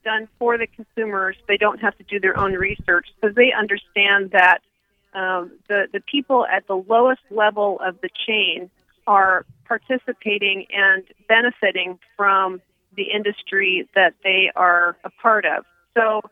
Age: 40-59